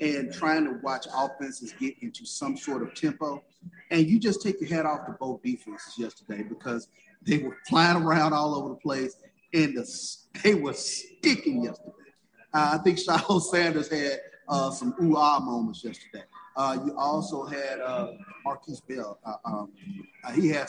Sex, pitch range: male, 135-195 Hz